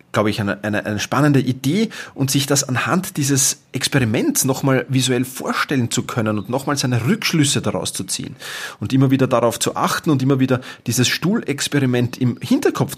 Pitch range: 105-140 Hz